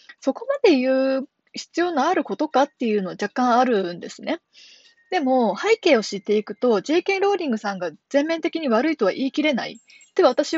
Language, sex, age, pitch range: Japanese, female, 20-39, 200-300 Hz